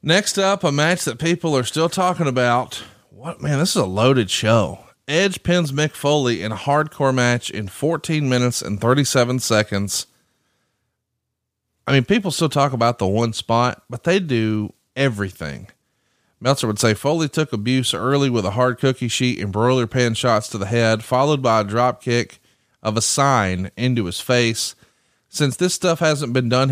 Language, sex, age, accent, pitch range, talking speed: English, male, 30-49, American, 110-135 Hz, 180 wpm